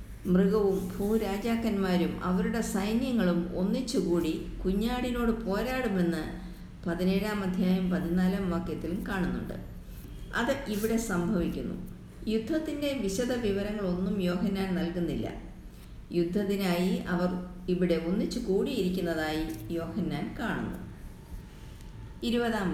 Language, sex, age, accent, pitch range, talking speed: Malayalam, female, 50-69, native, 180-225 Hz, 70 wpm